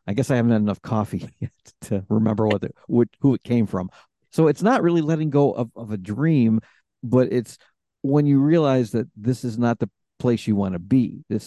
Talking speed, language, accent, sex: 215 wpm, English, American, male